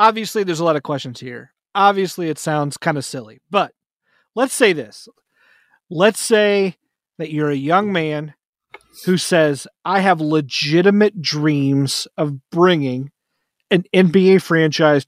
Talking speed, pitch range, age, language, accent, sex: 140 wpm, 155-195 Hz, 40-59, English, American, male